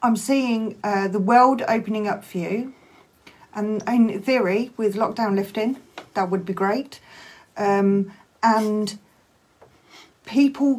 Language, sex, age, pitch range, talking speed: English, female, 40-59, 195-230 Hz, 120 wpm